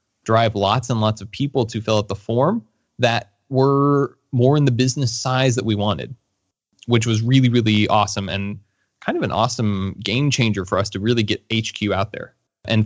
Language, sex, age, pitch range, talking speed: English, male, 20-39, 105-130 Hz, 195 wpm